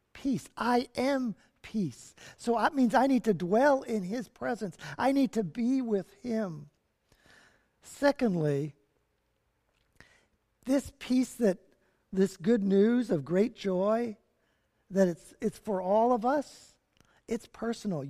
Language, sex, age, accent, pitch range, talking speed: English, male, 50-69, American, 165-240 Hz, 130 wpm